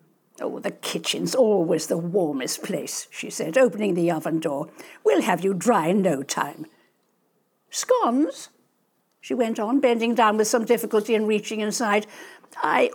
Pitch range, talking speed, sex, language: 200-285 Hz, 155 wpm, female, English